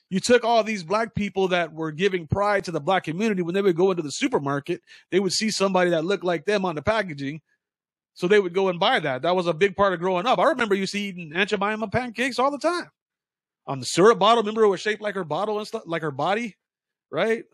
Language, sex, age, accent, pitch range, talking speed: English, male, 30-49, American, 160-210 Hz, 255 wpm